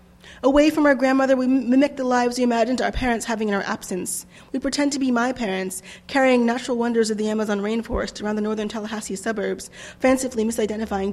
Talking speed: 195 wpm